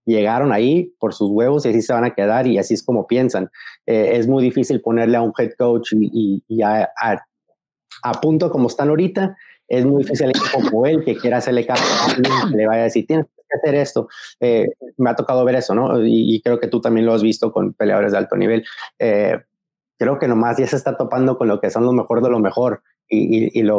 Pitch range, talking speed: 110-130 Hz, 245 wpm